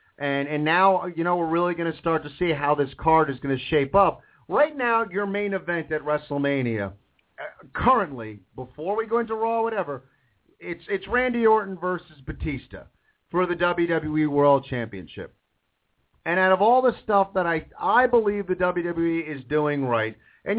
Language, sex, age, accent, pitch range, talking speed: English, male, 40-59, American, 145-195 Hz, 180 wpm